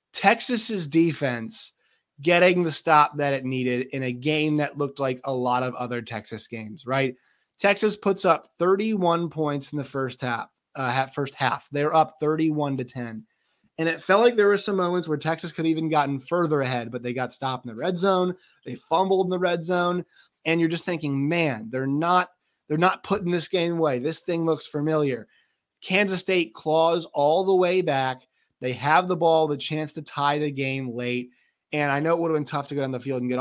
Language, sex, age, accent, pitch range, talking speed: English, male, 20-39, American, 130-170 Hz, 210 wpm